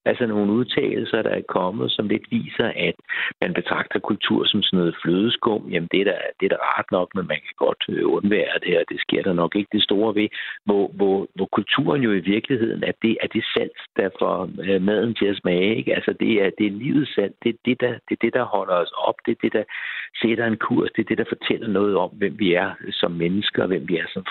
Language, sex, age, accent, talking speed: Danish, male, 60-79, native, 235 wpm